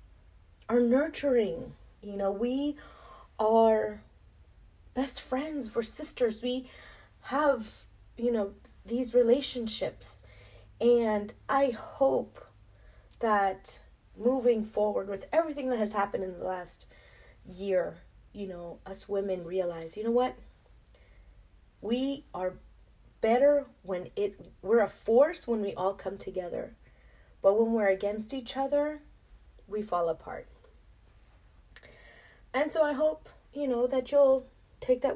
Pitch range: 195-275 Hz